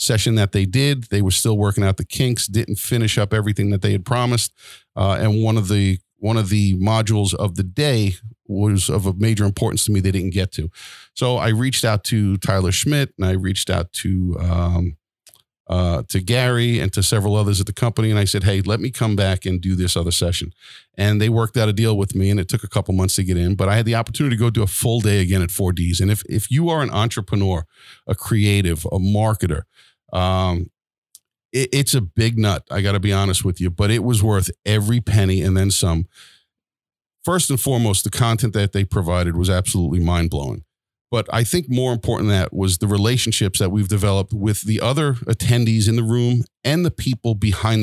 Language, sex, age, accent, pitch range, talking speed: English, male, 50-69, American, 95-115 Hz, 225 wpm